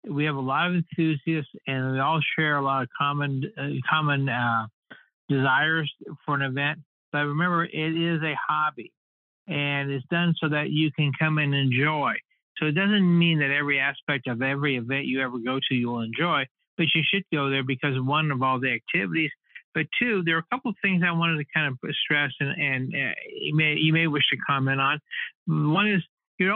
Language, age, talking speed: English, 60-79, 210 wpm